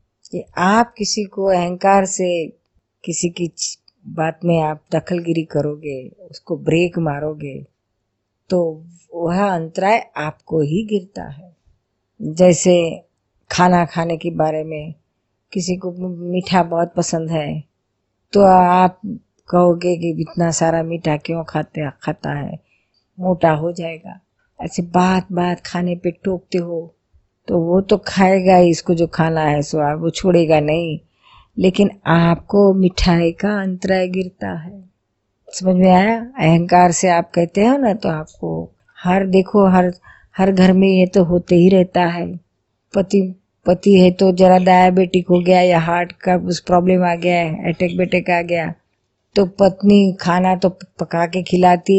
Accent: native